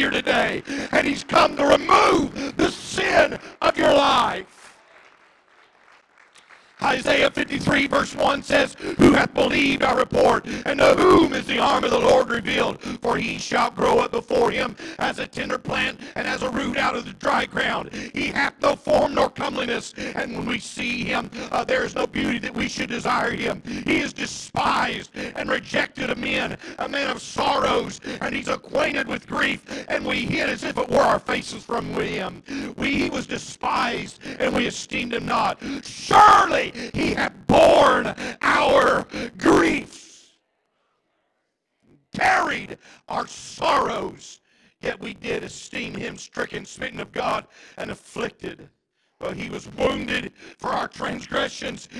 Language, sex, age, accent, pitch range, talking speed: English, male, 50-69, American, 255-300 Hz, 155 wpm